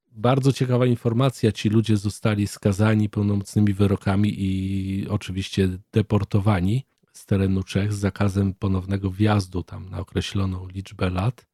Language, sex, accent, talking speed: Polish, male, native, 125 wpm